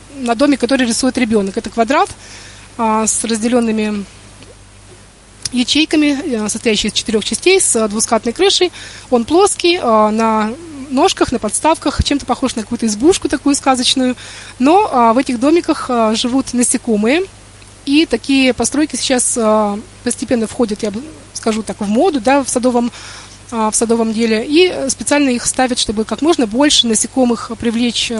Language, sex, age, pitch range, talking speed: Russian, female, 20-39, 215-265 Hz, 130 wpm